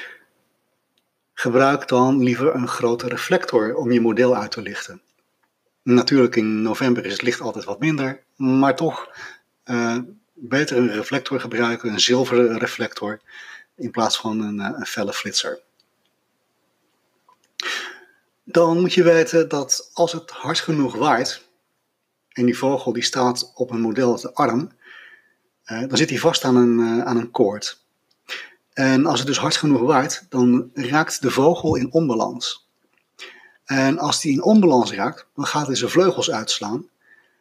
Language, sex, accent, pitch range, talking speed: Dutch, male, Dutch, 120-160 Hz, 150 wpm